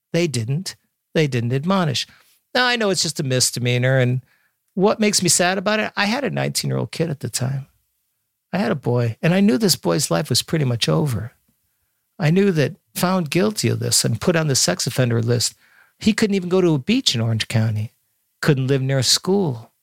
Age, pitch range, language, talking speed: 50-69, 120-185 Hz, English, 220 wpm